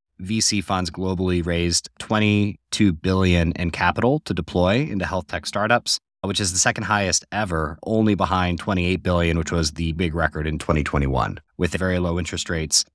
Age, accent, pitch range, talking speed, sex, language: 30-49, American, 85-100 Hz, 165 wpm, male, English